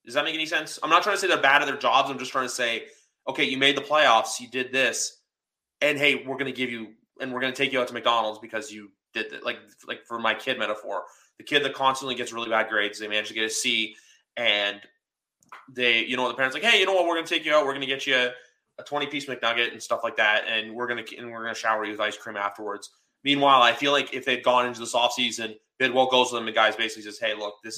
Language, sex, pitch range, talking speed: English, male, 110-135 Hz, 285 wpm